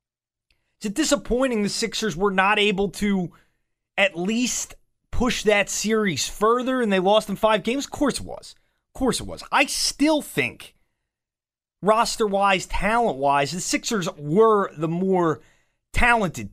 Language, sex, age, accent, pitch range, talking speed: English, male, 30-49, American, 175-225 Hz, 145 wpm